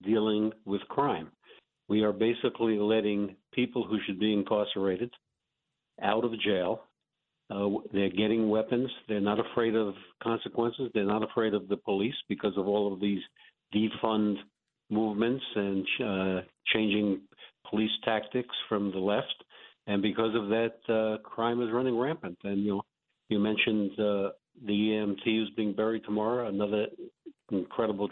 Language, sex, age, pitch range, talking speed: English, male, 50-69, 100-115 Hz, 145 wpm